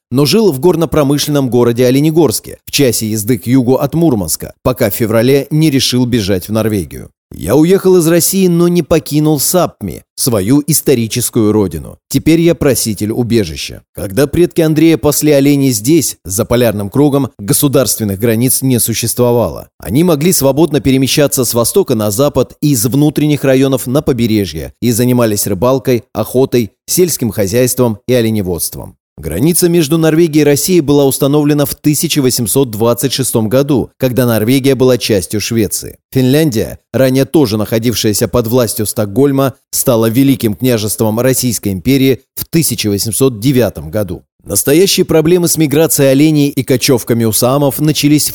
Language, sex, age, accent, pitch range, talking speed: Russian, male, 30-49, native, 115-145 Hz, 135 wpm